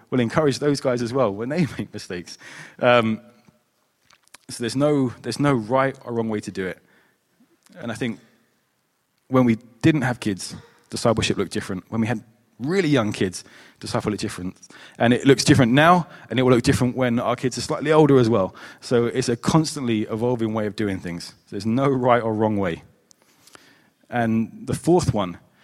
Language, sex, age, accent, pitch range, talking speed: English, male, 20-39, British, 110-145 Hz, 190 wpm